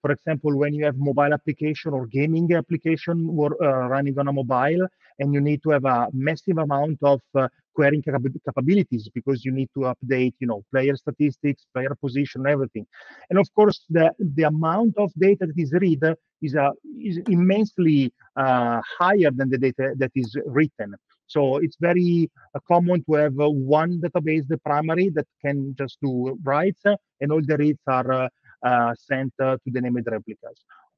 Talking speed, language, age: 175 wpm, English, 40-59